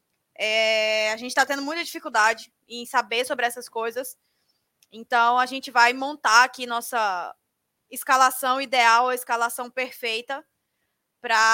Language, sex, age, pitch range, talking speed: Portuguese, female, 20-39, 245-300 Hz, 125 wpm